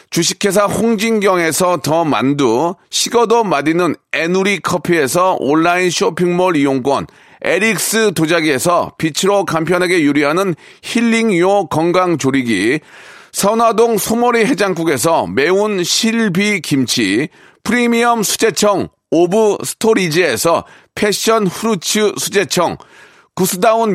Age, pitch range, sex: 40-59, 175-220 Hz, male